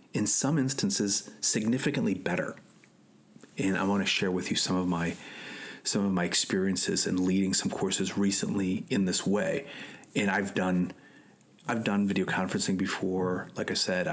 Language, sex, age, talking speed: English, male, 30-49, 160 wpm